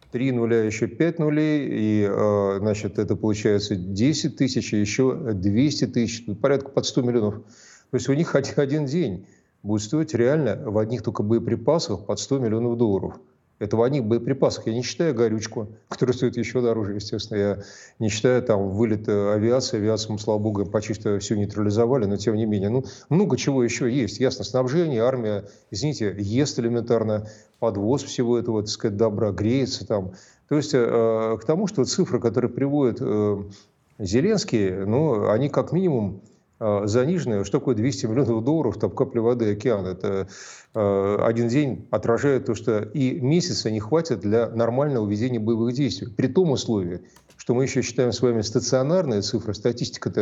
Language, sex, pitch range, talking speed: Russian, male, 105-130 Hz, 160 wpm